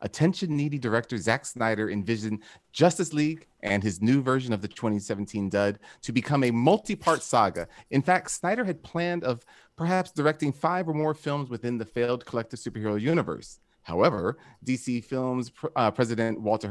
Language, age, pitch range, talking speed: English, 30-49, 115-170 Hz, 160 wpm